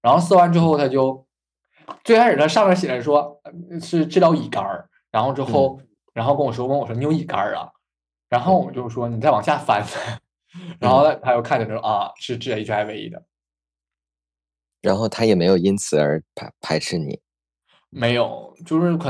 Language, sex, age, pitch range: Chinese, male, 20-39, 110-170 Hz